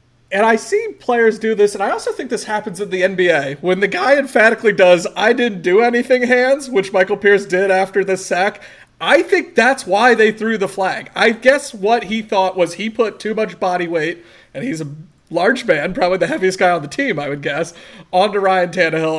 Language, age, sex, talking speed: English, 40-59, male, 220 wpm